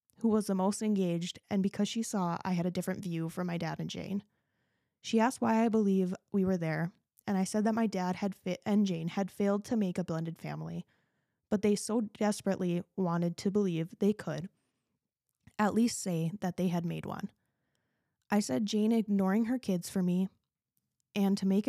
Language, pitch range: English, 175-205 Hz